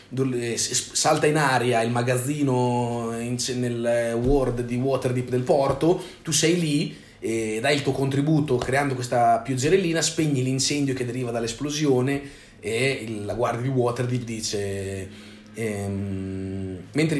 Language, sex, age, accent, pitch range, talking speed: Italian, male, 30-49, native, 115-140 Hz, 130 wpm